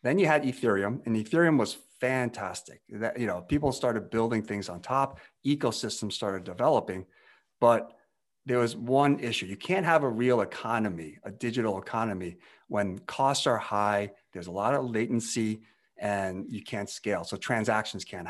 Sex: male